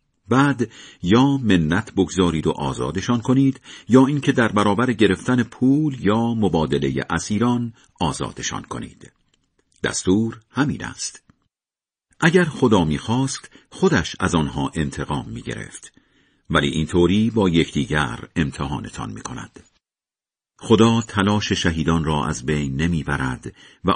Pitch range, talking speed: 80-120 Hz, 115 wpm